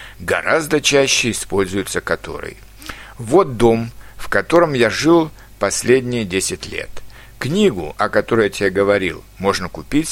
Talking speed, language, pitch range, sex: 125 wpm, Russian, 105-145 Hz, male